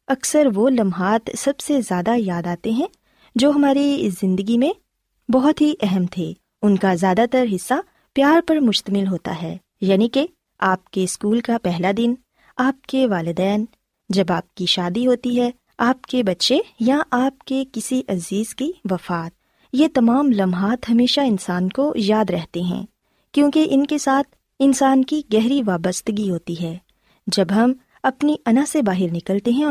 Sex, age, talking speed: female, 20-39, 165 wpm